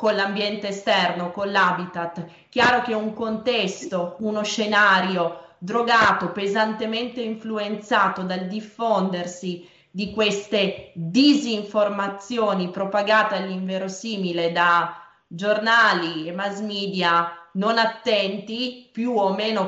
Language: Italian